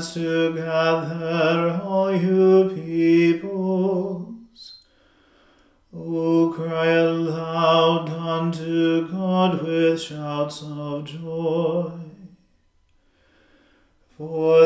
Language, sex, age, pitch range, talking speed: English, male, 40-59, 160-180 Hz, 60 wpm